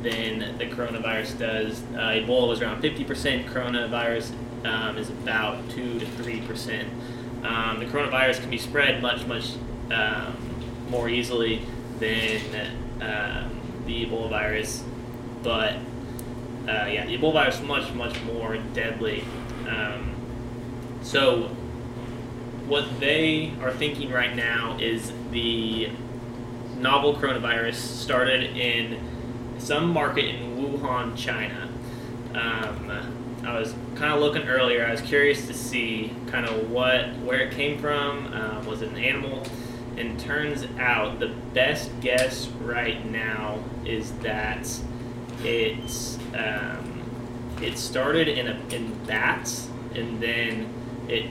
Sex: male